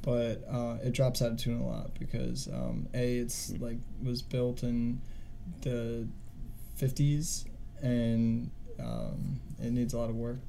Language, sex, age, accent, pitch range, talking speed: English, male, 20-39, American, 115-130 Hz, 155 wpm